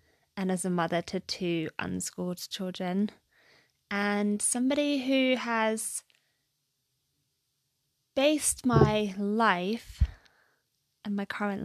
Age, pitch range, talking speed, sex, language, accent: 20-39, 170-215 Hz, 95 wpm, female, English, British